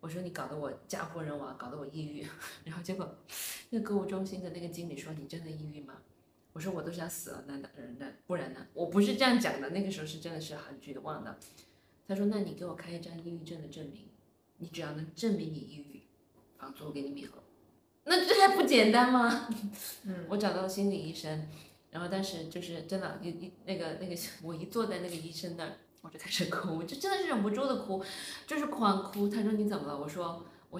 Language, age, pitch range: Chinese, 20-39, 160-205 Hz